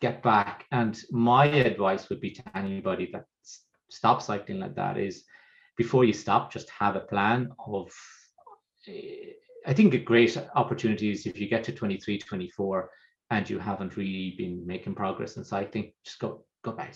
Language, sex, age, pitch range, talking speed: English, male, 30-49, 100-130 Hz, 170 wpm